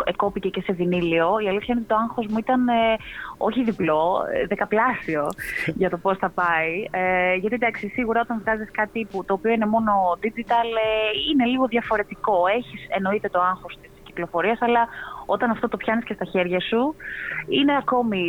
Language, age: Greek, 20-39